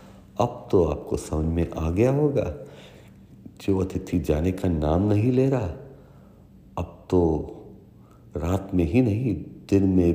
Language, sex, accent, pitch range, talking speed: Hindi, male, native, 85-105 Hz, 140 wpm